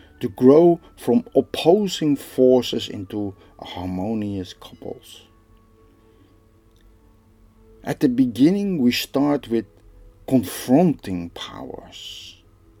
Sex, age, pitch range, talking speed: male, 50-69, 100-145 Hz, 75 wpm